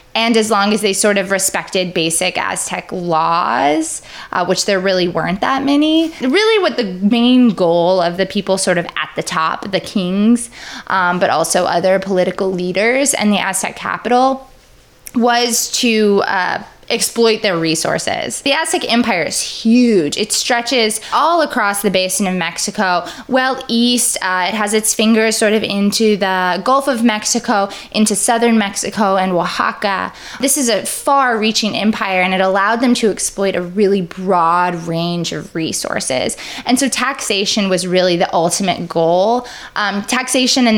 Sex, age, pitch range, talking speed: female, 20-39, 185-240 Hz, 160 wpm